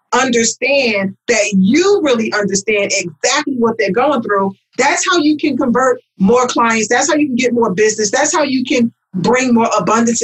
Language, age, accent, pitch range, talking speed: English, 40-59, American, 205-250 Hz, 180 wpm